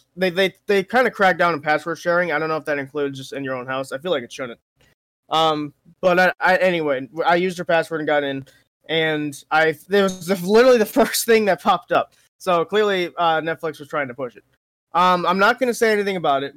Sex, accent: male, American